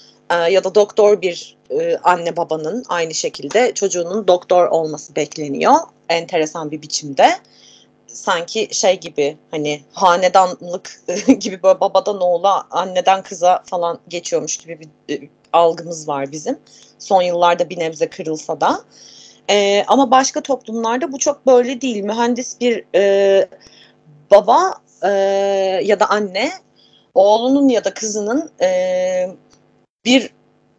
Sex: female